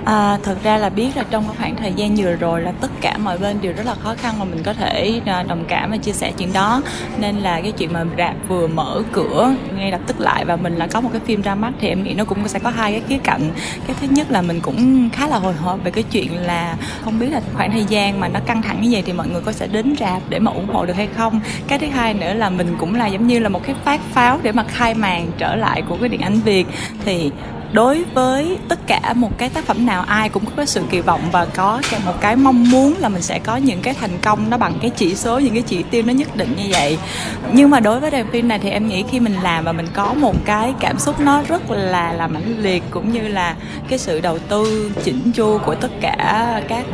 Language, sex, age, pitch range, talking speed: Vietnamese, female, 20-39, 185-240 Hz, 275 wpm